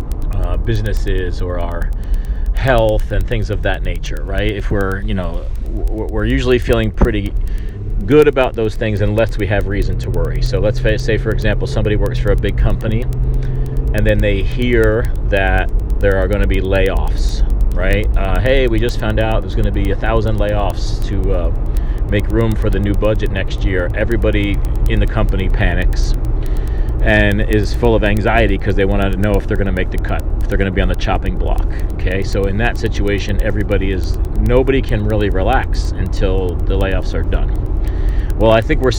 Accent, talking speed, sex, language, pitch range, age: American, 190 wpm, male, English, 95-110 Hz, 40-59